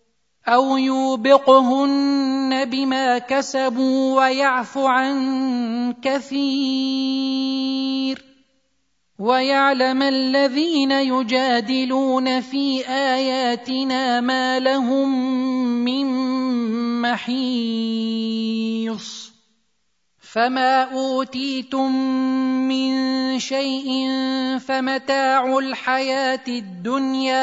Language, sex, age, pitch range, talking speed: Arabic, male, 30-49, 255-270 Hz, 50 wpm